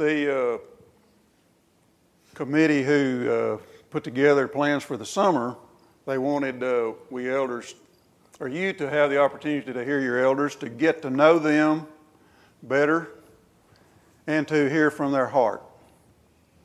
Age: 50-69